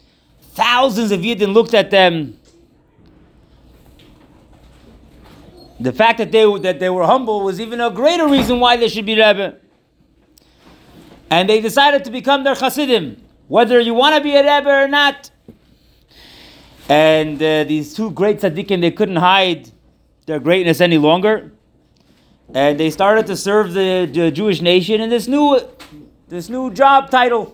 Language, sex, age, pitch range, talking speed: English, male, 30-49, 155-220 Hz, 150 wpm